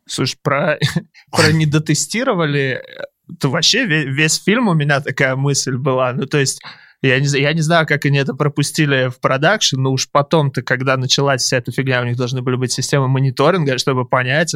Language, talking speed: Russian, 185 wpm